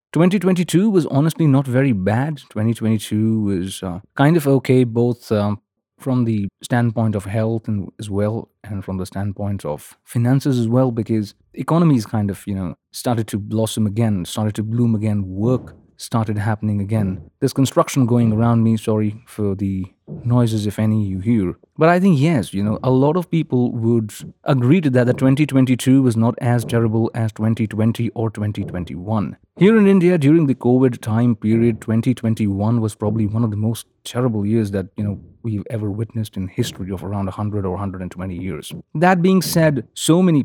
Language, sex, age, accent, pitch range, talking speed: Hindi, male, 30-49, native, 105-130 Hz, 195 wpm